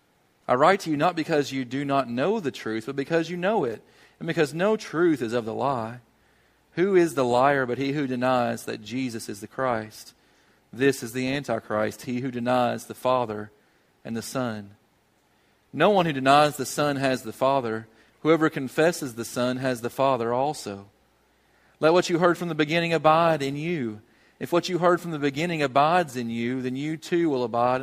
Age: 40-59